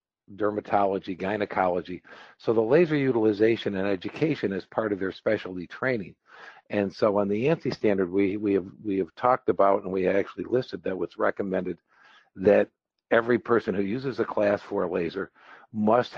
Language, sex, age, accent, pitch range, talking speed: English, male, 50-69, American, 95-110 Hz, 165 wpm